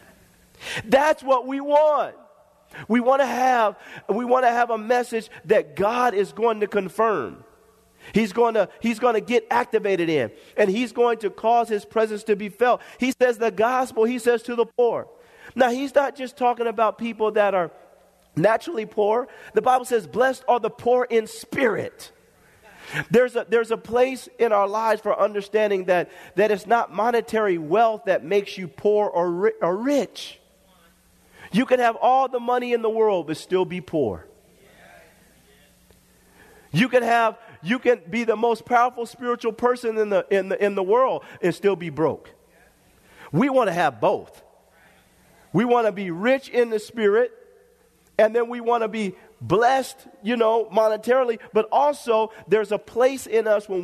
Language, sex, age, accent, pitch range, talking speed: English, male, 40-59, American, 205-245 Hz, 175 wpm